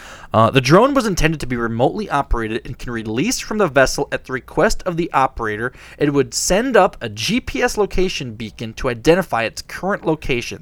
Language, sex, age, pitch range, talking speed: English, male, 20-39, 120-170 Hz, 190 wpm